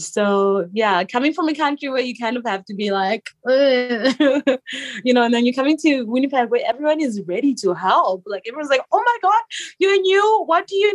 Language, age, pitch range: English, 20-39, 185-275 Hz